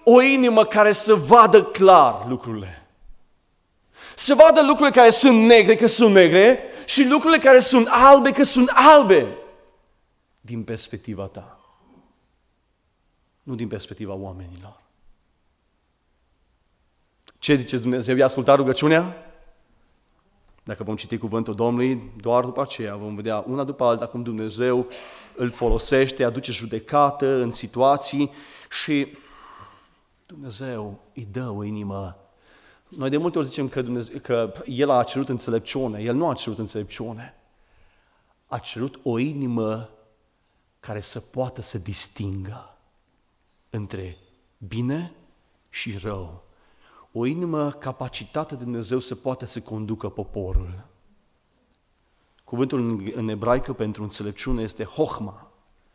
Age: 30-49